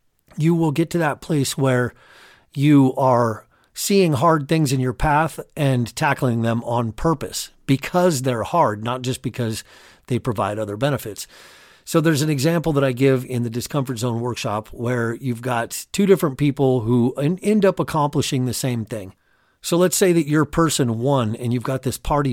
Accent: American